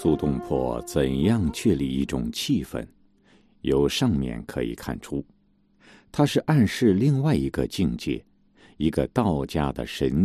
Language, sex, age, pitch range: Chinese, male, 50-69, 70-100 Hz